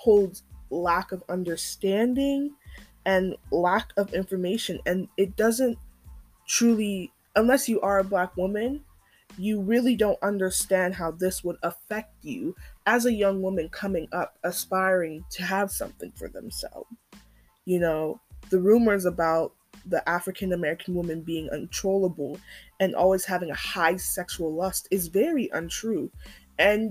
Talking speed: 135 wpm